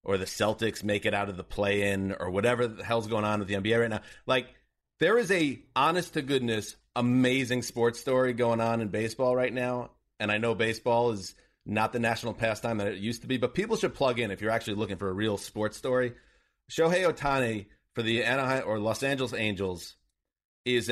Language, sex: English, male